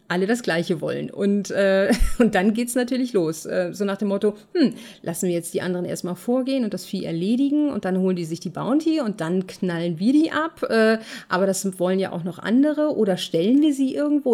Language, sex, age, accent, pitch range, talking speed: German, female, 30-49, German, 195-235 Hz, 230 wpm